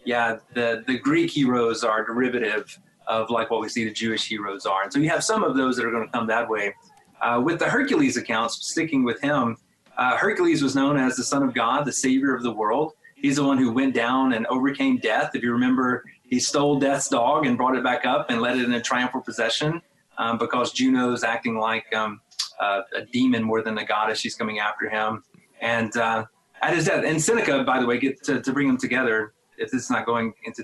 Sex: male